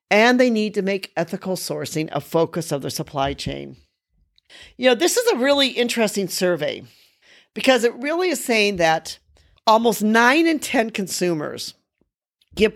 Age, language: 50-69, English